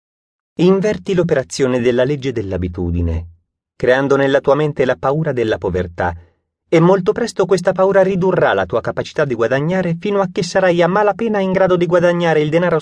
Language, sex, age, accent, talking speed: Italian, male, 30-49, native, 170 wpm